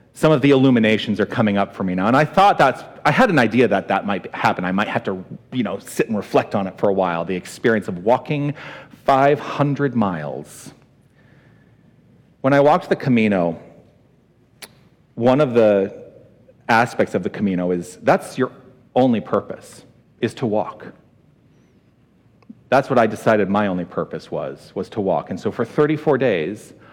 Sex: male